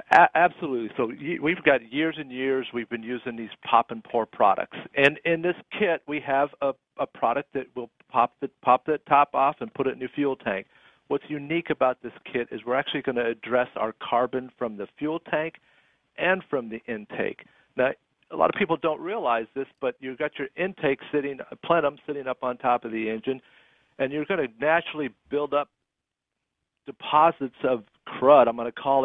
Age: 50-69